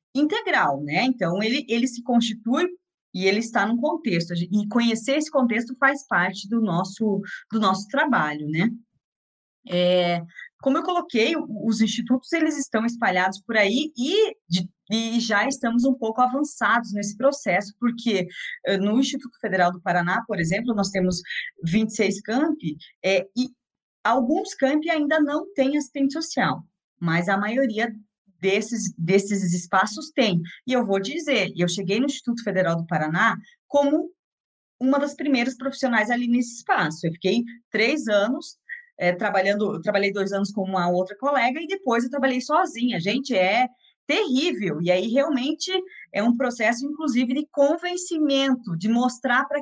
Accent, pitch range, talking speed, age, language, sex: Brazilian, 195-275 Hz, 150 wpm, 20-39, Portuguese, female